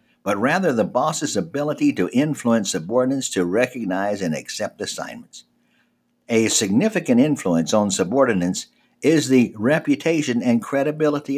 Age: 60-79